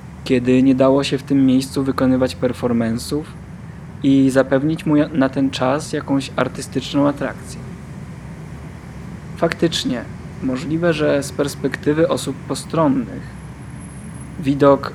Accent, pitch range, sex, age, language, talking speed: native, 130-155 Hz, male, 20-39, Polish, 105 wpm